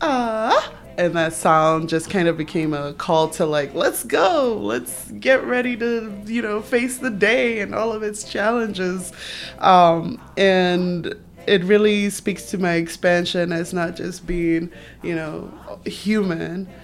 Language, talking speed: English, 155 wpm